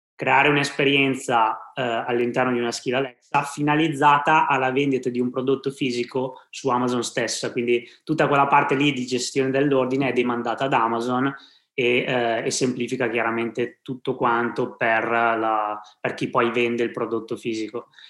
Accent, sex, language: native, male, Italian